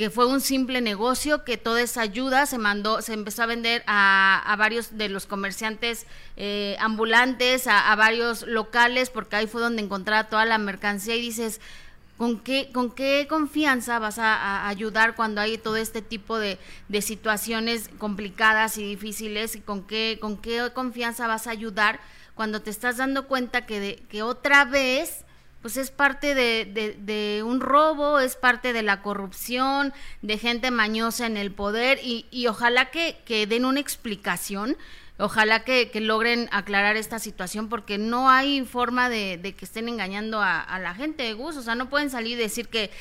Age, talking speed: 30-49, 185 wpm